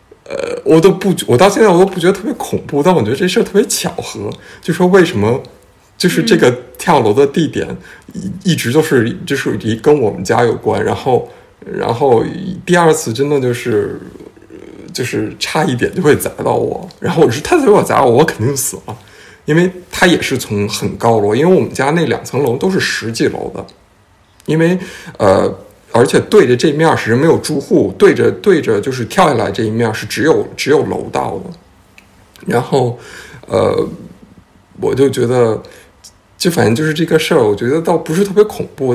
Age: 50-69